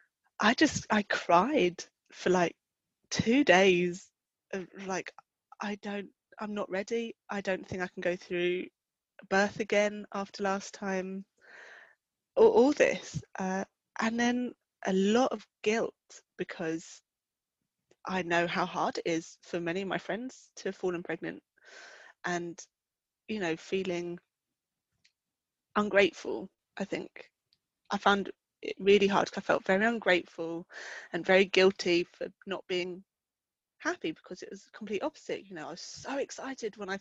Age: 20-39